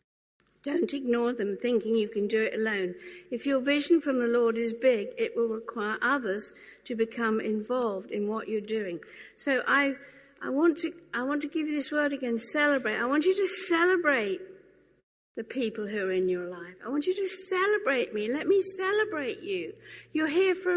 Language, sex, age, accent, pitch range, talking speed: English, female, 60-79, British, 225-345 Hz, 185 wpm